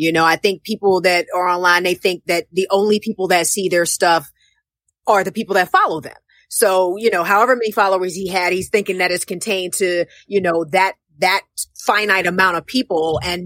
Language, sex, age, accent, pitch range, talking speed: English, female, 30-49, American, 170-200 Hz, 210 wpm